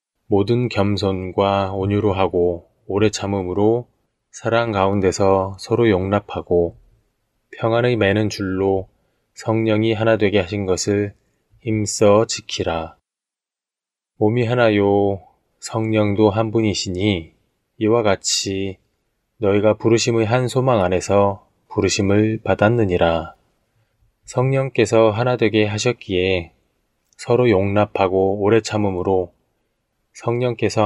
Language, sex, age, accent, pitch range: Korean, male, 20-39, native, 95-115 Hz